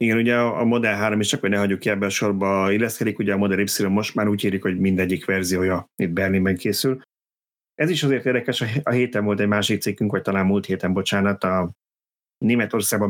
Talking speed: 210 wpm